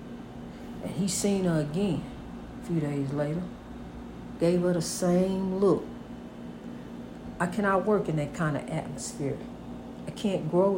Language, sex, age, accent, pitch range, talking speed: English, female, 60-79, American, 195-265 Hz, 140 wpm